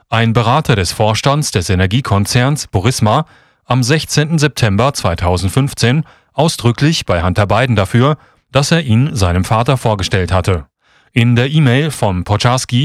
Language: German